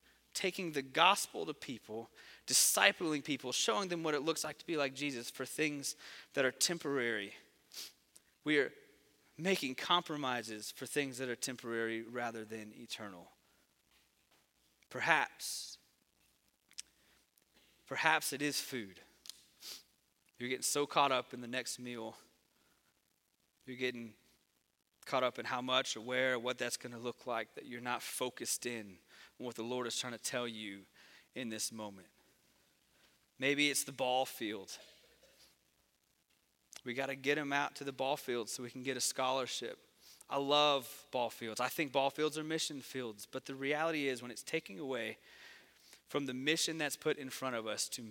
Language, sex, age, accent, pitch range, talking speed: English, male, 30-49, American, 120-145 Hz, 160 wpm